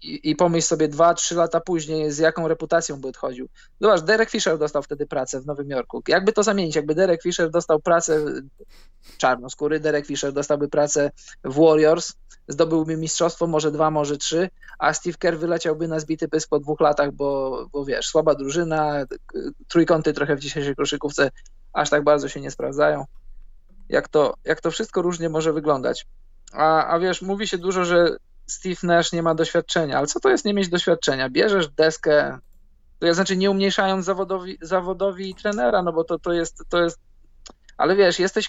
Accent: native